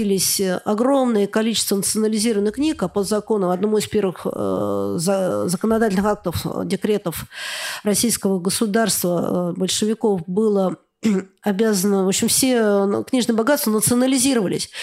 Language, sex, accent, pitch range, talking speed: Russian, female, native, 205-265 Hz, 95 wpm